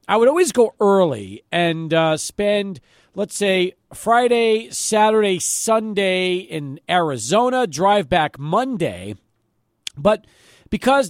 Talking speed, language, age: 110 wpm, English, 40-59